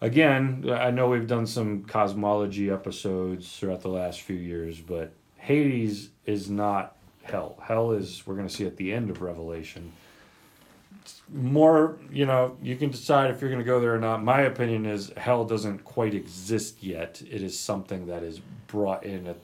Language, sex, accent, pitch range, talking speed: English, male, American, 95-120 Hz, 180 wpm